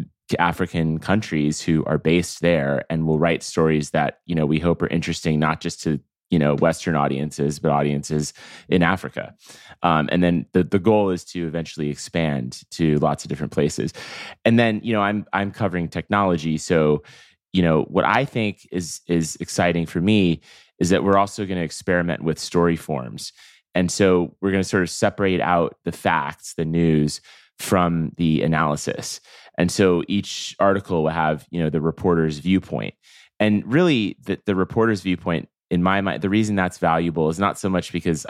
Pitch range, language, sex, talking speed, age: 80-95 Hz, English, male, 185 wpm, 30-49